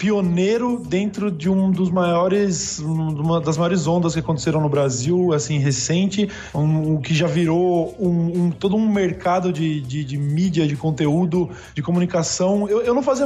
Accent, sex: Brazilian, male